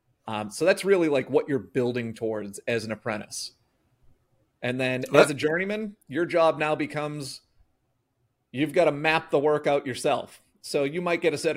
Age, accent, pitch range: 30-49, American, 125-155 Hz